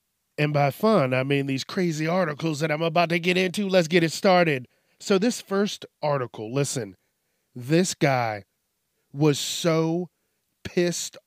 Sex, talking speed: male, 150 wpm